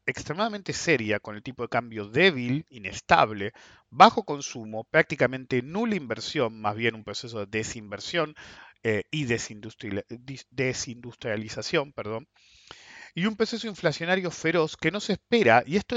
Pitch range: 115-185 Hz